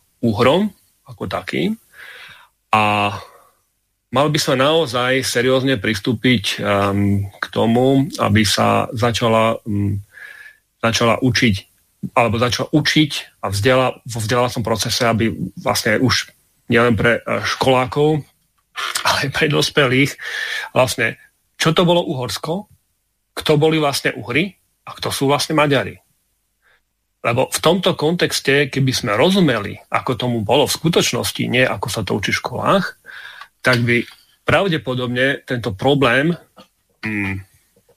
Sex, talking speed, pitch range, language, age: male, 115 wpm, 110-150 Hz, Slovak, 40-59